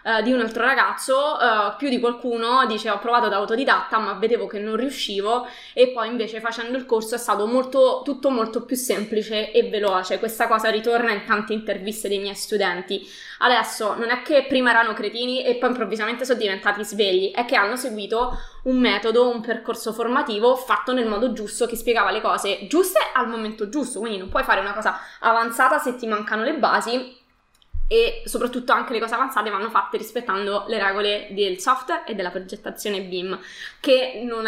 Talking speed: 190 wpm